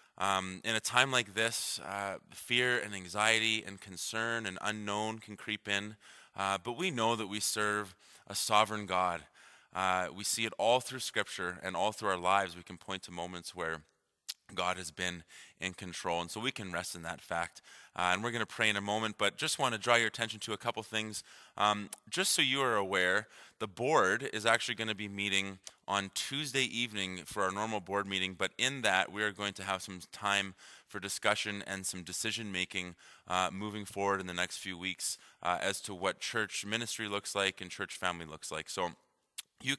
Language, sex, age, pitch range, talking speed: English, male, 20-39, 95-110 Hz, 205 wpm